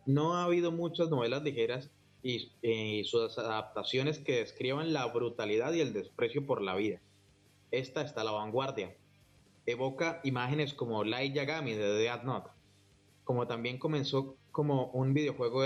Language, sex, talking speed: Spanish, male, 150 wpm